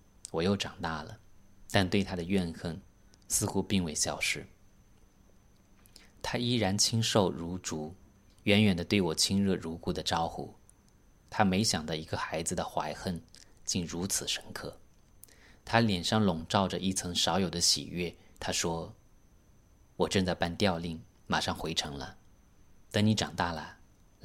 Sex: male